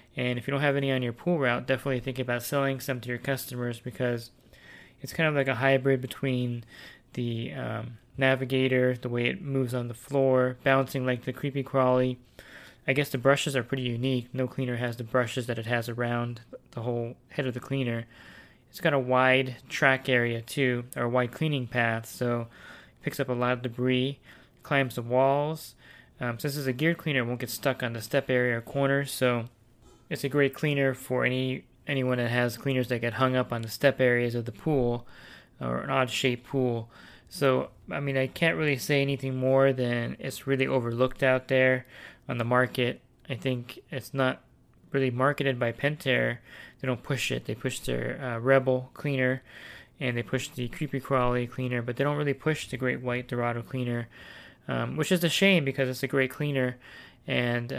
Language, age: English, 20-39